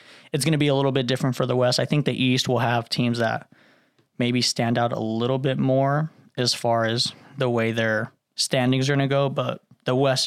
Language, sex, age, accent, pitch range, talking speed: English, male, 20-39, American, 125-140 Hz, 235 wpm